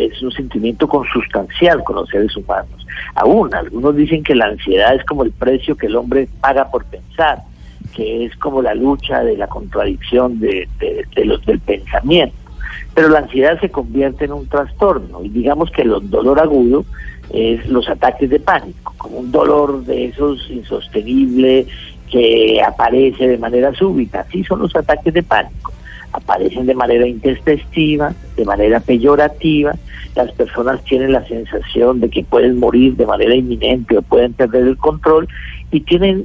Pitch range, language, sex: 120-150 Hz, Spanish, male